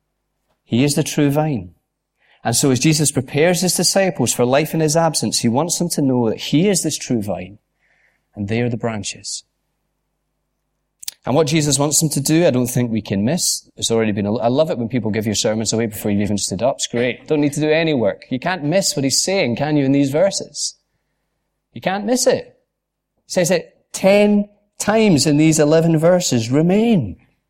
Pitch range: 125-170 Hz